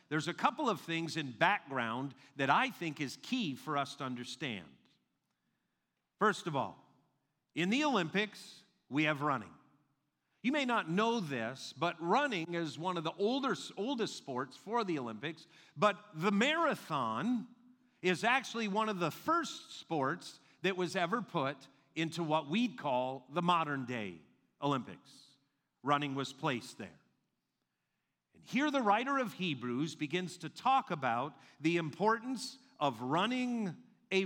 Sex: male